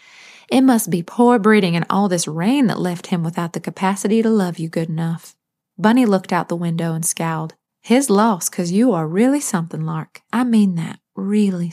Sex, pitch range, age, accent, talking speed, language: female, 170-215 Hz, 30-49, American, 200 wpm, English